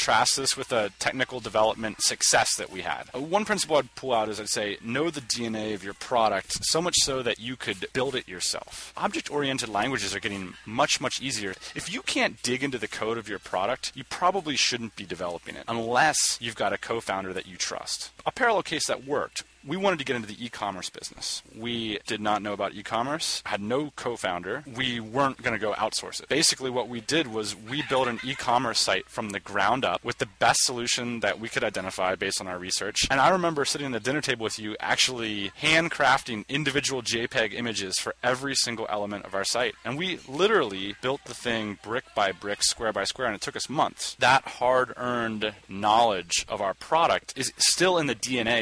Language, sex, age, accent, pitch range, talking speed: English, male, 30-49, American, 105-130 Hz, 210 wpm